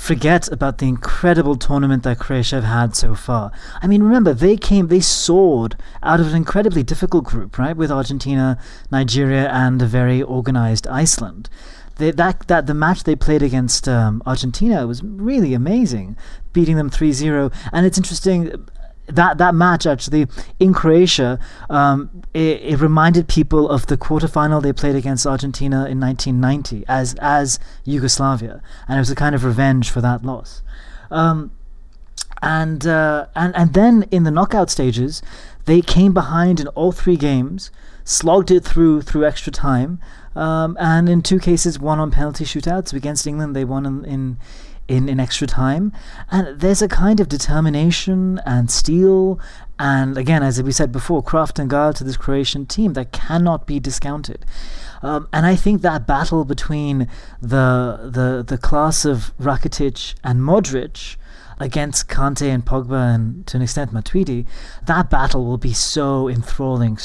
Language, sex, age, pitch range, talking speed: English, male, 30-49, 130-165 Hz, 170 wpm